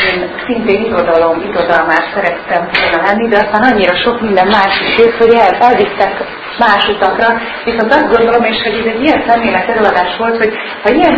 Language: Hungarian